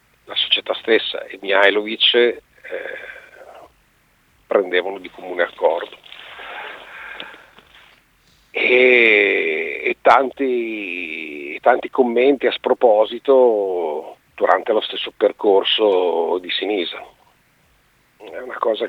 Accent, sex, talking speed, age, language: native, male, 90 wpm, 50-69, Italian